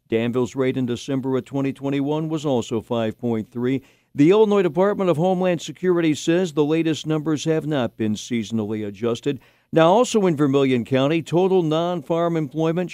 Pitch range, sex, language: 115-150 Hz, male, English